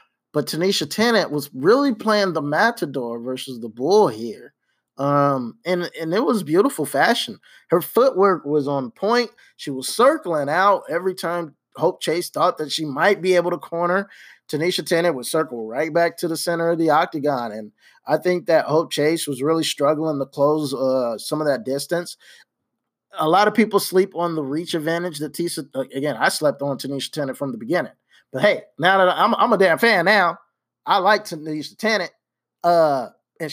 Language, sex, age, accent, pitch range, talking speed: English, male, 20-39, American, 145-190 Hz, 190 wpm